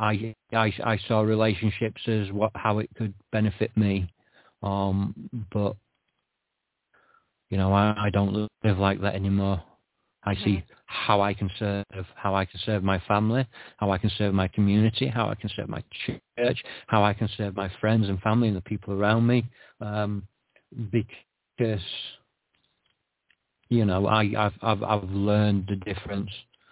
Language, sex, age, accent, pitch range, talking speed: English, male, 40-59, British, 100-115 Hz, 160 wpm